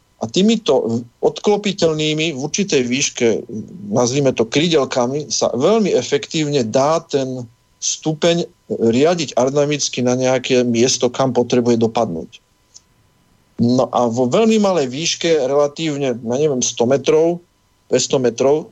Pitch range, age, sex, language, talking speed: 120-155 Hz, 40-59, male, Slovak, 110 wpm